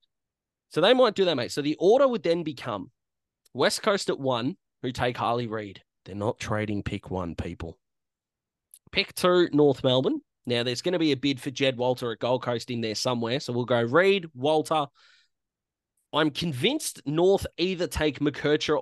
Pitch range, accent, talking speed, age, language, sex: 115-155 Hz, Australian, 180 wpm, 20-39, English, male